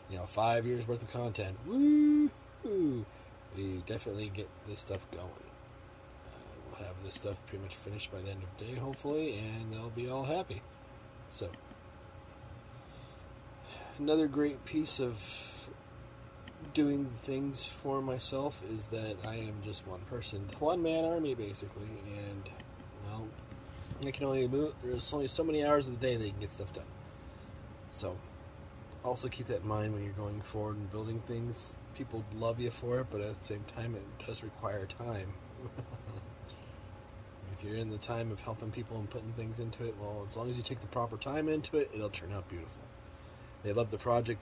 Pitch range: 100-120 Hz